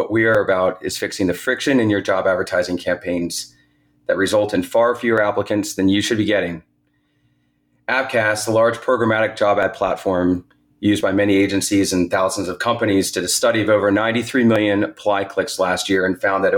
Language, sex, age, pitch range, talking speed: English, male, 30-49, 90-110 Hz, 190 wpm